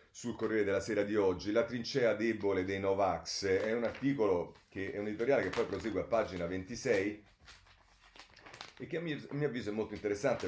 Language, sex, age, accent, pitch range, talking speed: Italian, male, 40-59, native, 90-115 Hz, 185 wpm